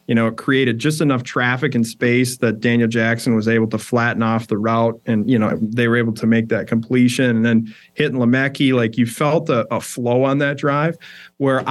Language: English